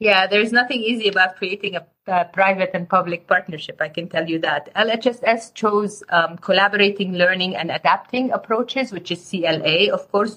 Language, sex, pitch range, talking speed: English, female, 175-215 Hz, 180 wpm